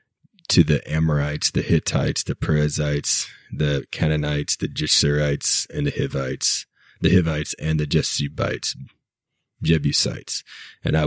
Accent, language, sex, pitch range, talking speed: American, English, male, 75-80 Hz, 120 wpm